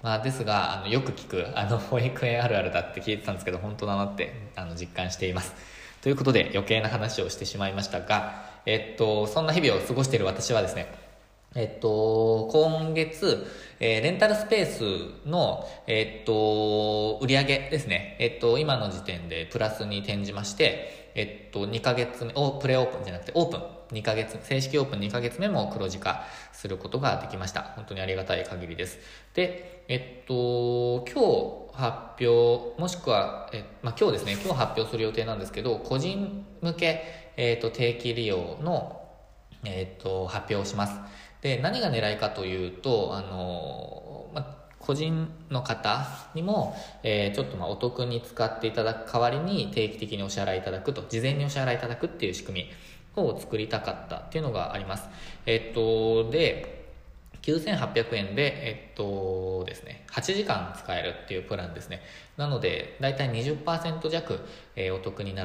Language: Japanese